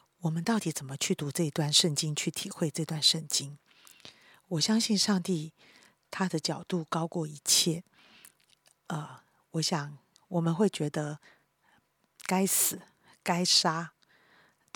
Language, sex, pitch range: Chinese, female, 155-190 Hz